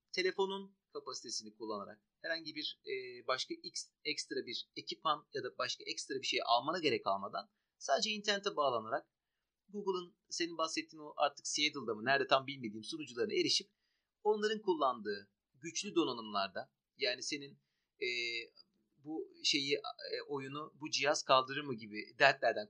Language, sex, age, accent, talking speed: Turkish, male, 40-59, native, 125 wpm